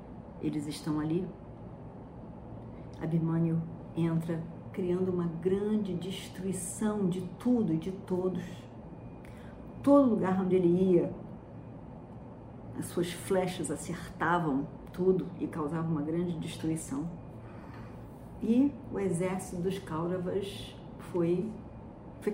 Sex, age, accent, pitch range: female, 40-59, Brazilian, 160-205 Hz